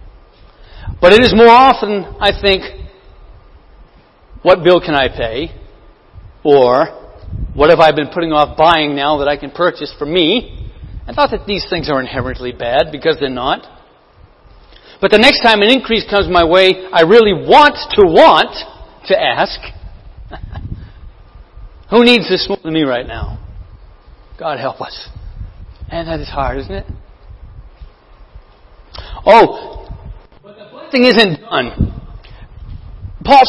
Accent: American